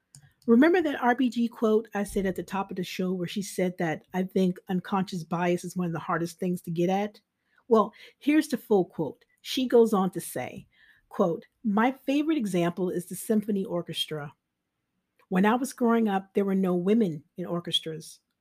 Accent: American